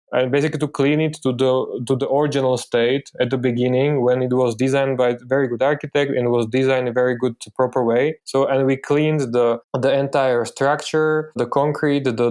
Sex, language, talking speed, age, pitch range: male, Polish, 215 wpm, 20-39, 125-140 Hz